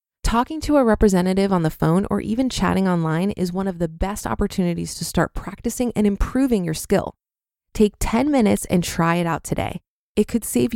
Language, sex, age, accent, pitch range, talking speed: English, female, 20-39, American, 175-240 Hz, 195 wpm